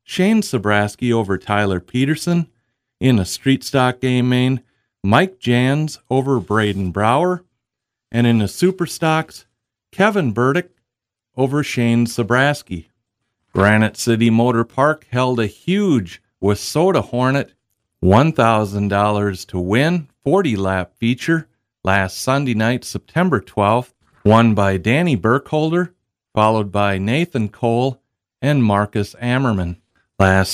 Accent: American